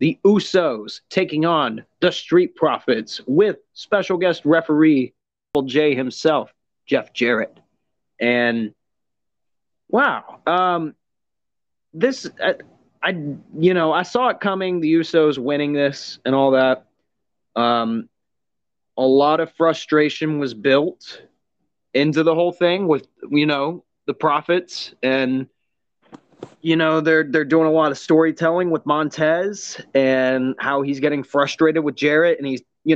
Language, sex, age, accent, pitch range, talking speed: English, male, 30-49, American, 135-170 Hz, 135 wpm